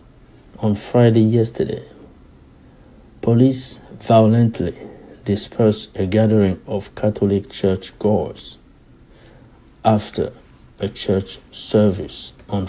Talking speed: 80 wpm